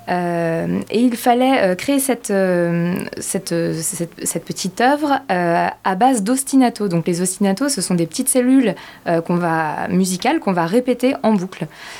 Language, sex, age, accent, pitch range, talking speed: French, female, 20-39, French, 175-235 Hz, 170 wpm